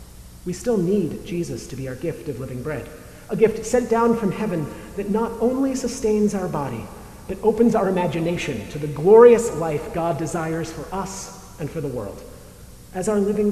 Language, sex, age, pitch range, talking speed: English, male, 40-59, 145-200 Hz, 185 wpm